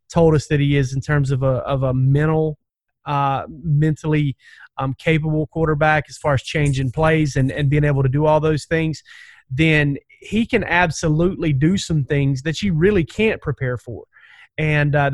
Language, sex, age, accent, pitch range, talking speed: English, male, 30-49, American, 145-165 Hz, 180 wpm